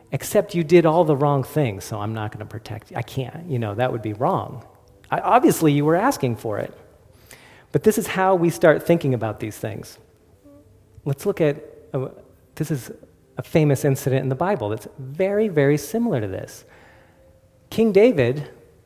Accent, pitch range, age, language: American, 120-180 Hz, 40-59, English